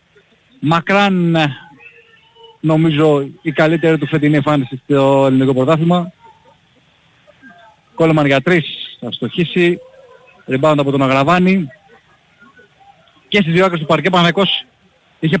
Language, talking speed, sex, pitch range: Greek, 95 wpm, male, 145-185 Hz